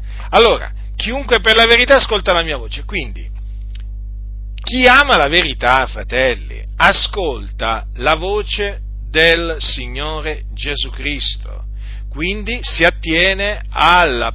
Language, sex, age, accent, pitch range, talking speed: Italian, male, 50-69, native, 100-165 Hz, 110 wpm